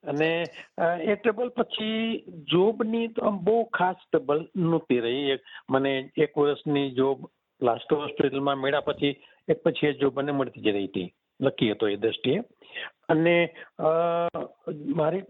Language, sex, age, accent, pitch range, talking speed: Gujarati, male, 60-79, native, 135-175 Hz, 135 wpm